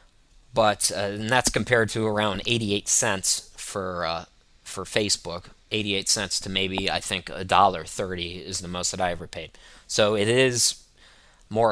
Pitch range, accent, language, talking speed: 95-115 Hz, American, English, 170 wpm